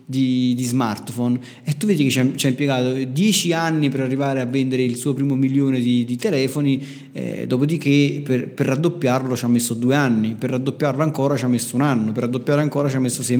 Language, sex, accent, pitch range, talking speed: Italian, male, native, 125-145 Hz, 215 wpm